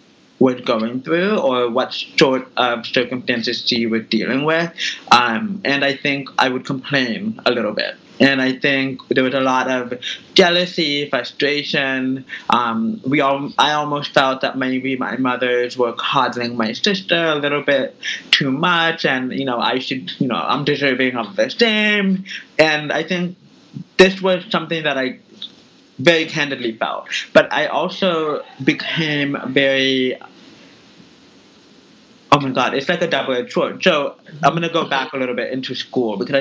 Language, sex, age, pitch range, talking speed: English, male, 20-39, 125-155 Hz, 160 wpm